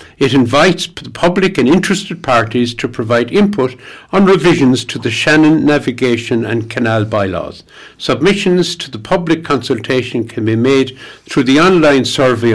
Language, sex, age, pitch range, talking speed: English, male, 60-79, 115-155 Hz, 150 wpm